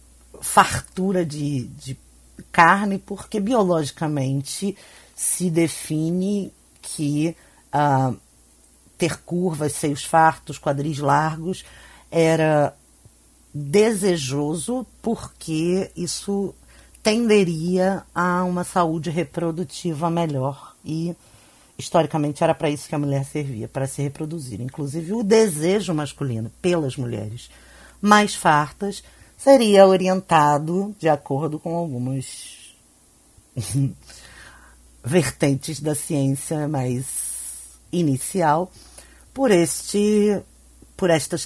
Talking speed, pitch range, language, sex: 90 wpm, 135-180 Hz, Portuguese, female